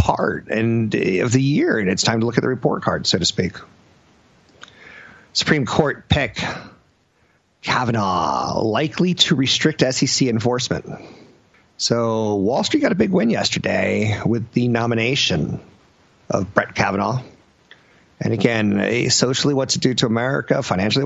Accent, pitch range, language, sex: American, 105-135 Hz, English, male